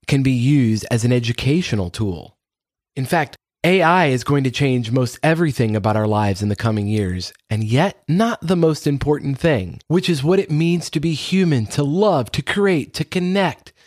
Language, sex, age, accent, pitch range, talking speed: English, male, 30-49, American, 115-160 Hz, 190 wpm